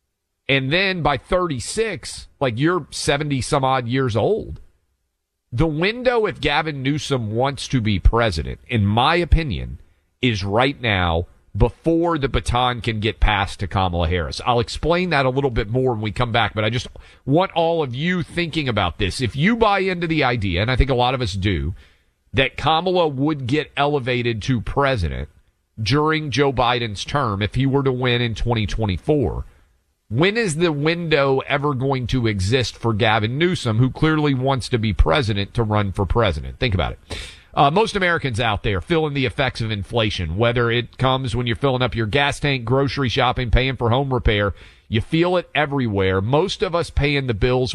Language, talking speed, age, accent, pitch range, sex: English, 185 wpm, 40-59, American, 100-145 Hz, male